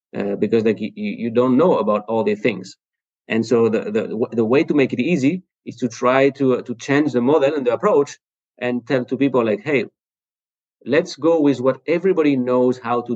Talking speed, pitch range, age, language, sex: 215 wpm, 115-140 Hz, 30-49, English, male